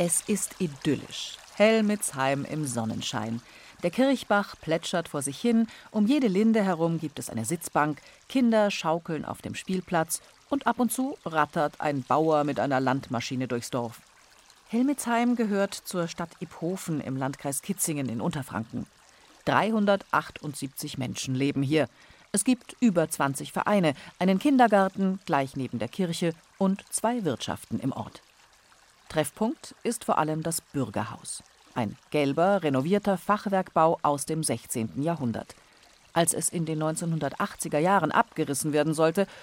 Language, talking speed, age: German, 135 wpm, 40-59